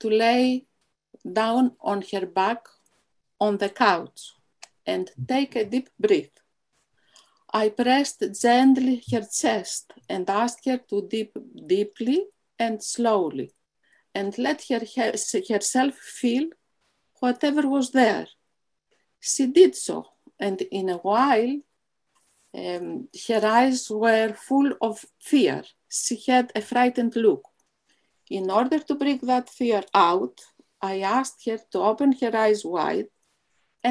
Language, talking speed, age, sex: English, 120 wpm, 50-69, female